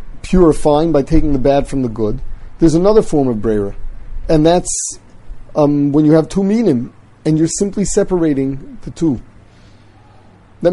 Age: 40-59